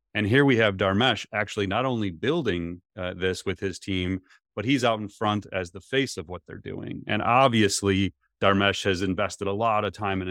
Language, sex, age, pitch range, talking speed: English, male, 30-49, 90-110 Hz, 210 wpm